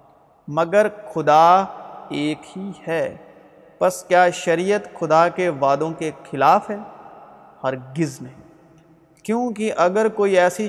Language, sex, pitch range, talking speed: Urdu, male, 155-195 Hz, 120 wpm